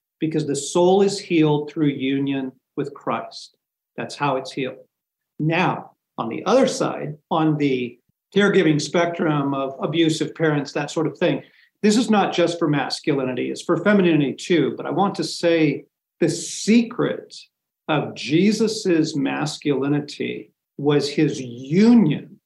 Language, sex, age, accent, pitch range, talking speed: English, male, 50-69, American, 145-180 Hz, 140 wpm